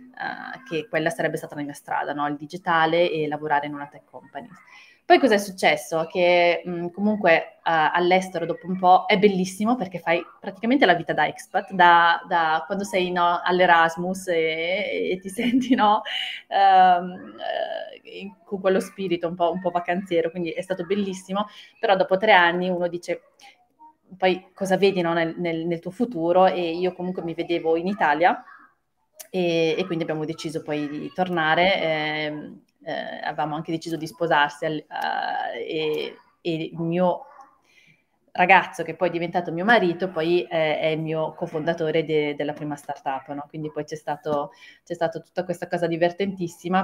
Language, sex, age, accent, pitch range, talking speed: Italian, female, 20-39, native, 165-190 Hz, 170 wpm